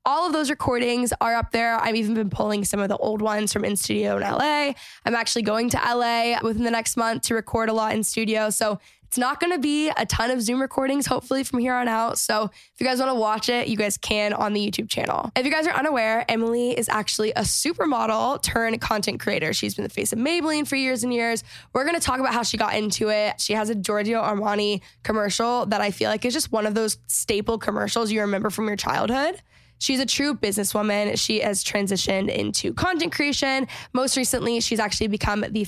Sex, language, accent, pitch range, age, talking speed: female, English, American, 215-250 Hz, 10-29, 225 wpm